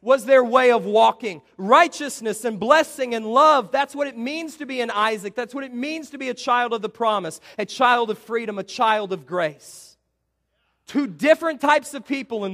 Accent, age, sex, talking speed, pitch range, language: American, 40-59, male, 205 wpm, 135-205 Hz, English